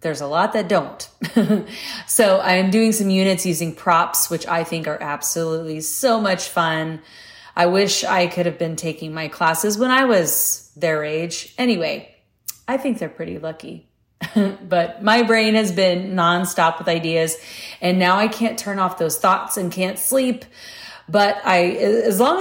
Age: 30-49